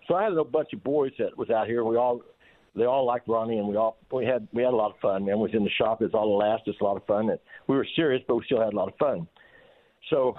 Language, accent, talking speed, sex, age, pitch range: English, American, 325 wpm, male, 60-79, 110-130 Hz